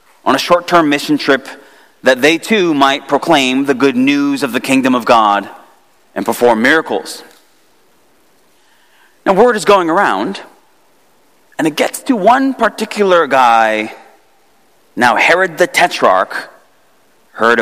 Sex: male